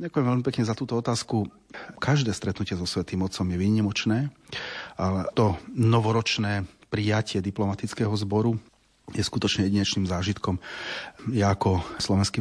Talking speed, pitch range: 125 wpm, 95-115 Hz